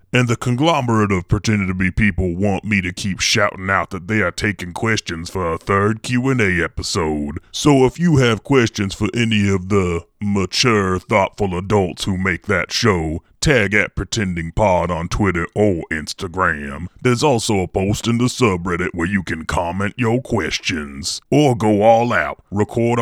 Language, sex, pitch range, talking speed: English, female, 90-115 Hz, 170 wpm